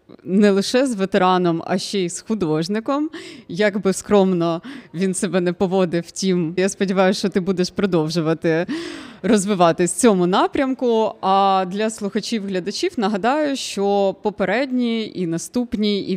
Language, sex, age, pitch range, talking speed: Ukrainian, female, 20-39, 175-215 Hz, 135 wpm